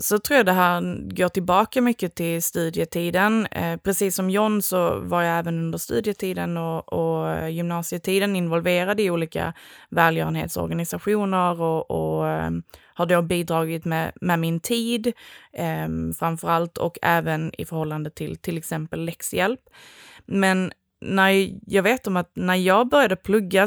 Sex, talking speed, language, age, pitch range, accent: female, 135 wpm, Swedish, 20-39, 160-190 Hz, native